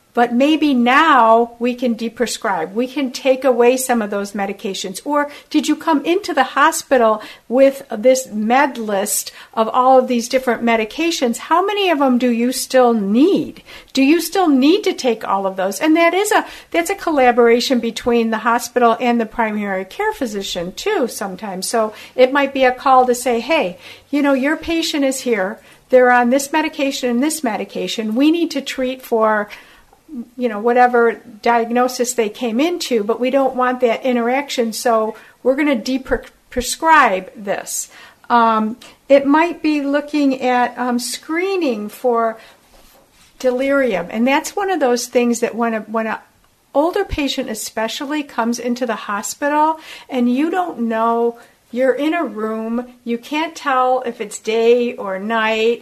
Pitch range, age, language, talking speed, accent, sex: 230-280 Hz, 60-79, English, 165 wpm, American, female